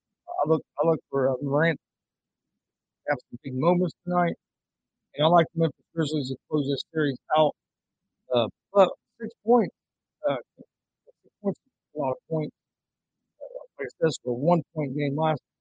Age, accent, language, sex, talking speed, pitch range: 50-69, American, English, male, 180 wpm, 135-165 Hz